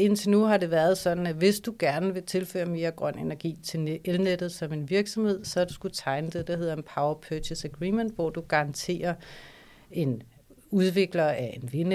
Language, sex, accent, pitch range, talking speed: Danish, female, native, 155-180 Hz, 200 wpm